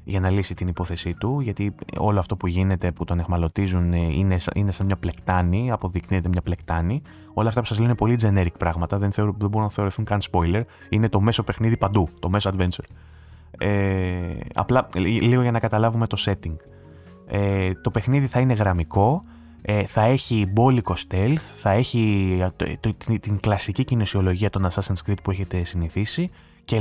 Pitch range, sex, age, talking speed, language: 90-115 Hz, male, 20-39, 180 wpm, Greek